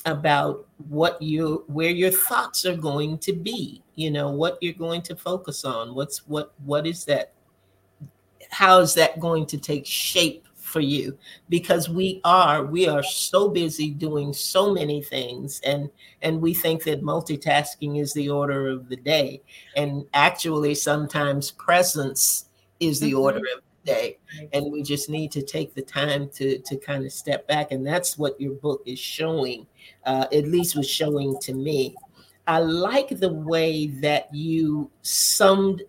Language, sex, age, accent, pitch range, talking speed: English, male, 50-69, American, 140-170 Hz, 165 wpm